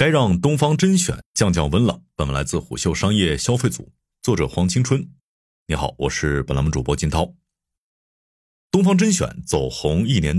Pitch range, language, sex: 85-130 Hz, Chinese, male